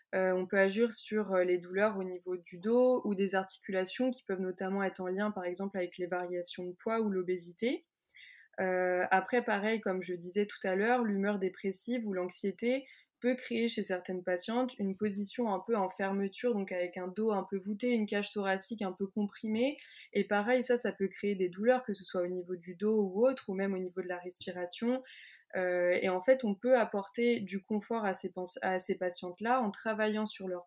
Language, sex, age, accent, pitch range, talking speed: French, female, 20-39, French, 185-230 Hz, 210 wpm